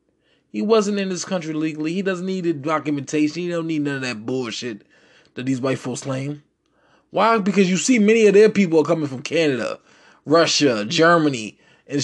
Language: English